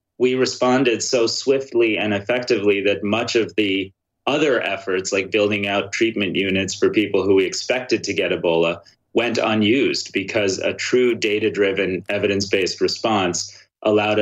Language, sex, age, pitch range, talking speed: English, male, 30-49, 100-125 Hz, 145 wpm